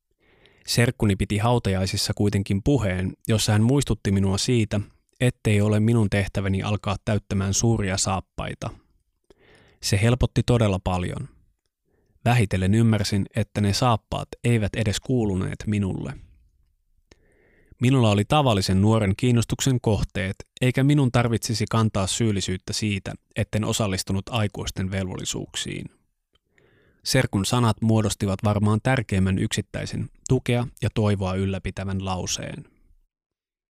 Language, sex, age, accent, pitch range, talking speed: Finnish, male, 20-39, native, 95-120 Hz, 105 wpm